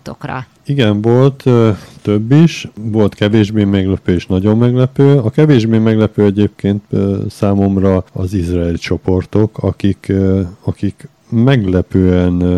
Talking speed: 100 wpm